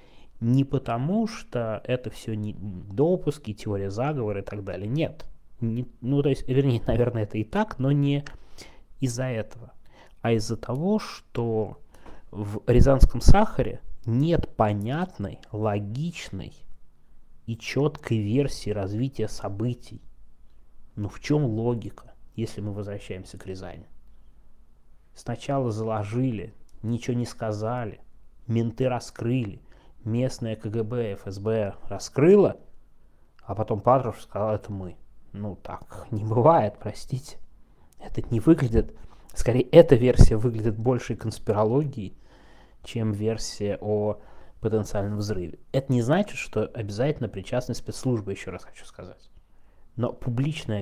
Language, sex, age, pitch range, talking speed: Russian, male, 20-39, 100-130 Hz, 120 wpm